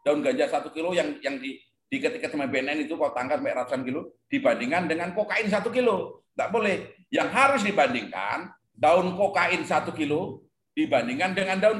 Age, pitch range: 40-59, 160-230 Hz